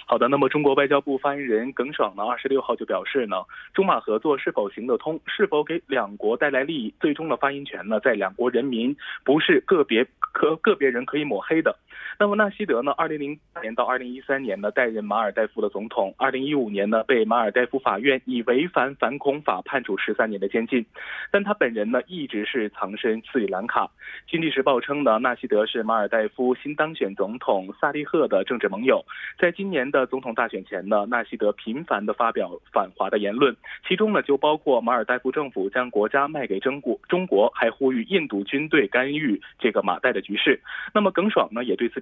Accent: Chinese